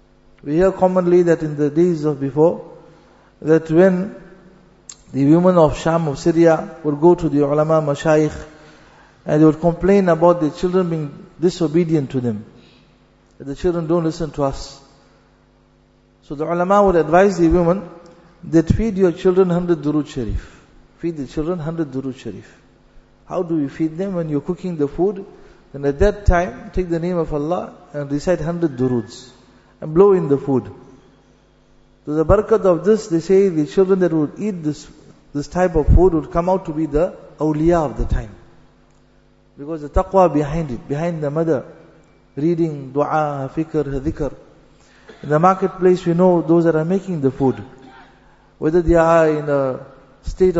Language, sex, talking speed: English, male, 170 wpm